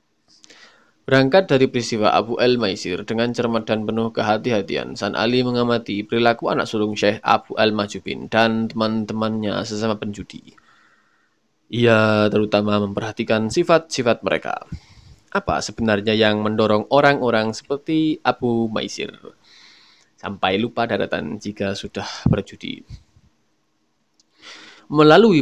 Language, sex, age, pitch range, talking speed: Indonesian, male, 20-39, 105-125 Hz, 100 wpm